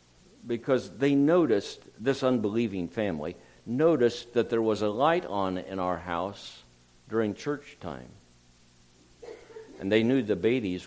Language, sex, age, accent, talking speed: English, male, 60-79, American, 130 wpm